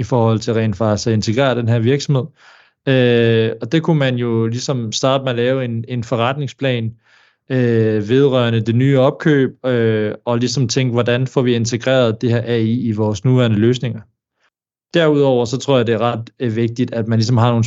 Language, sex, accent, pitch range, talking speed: Danish, male, native, 115-130 Hz, 195 wpm